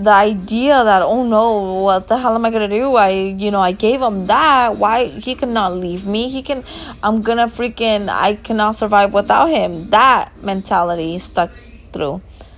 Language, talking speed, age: English, 180 wpm, 20-39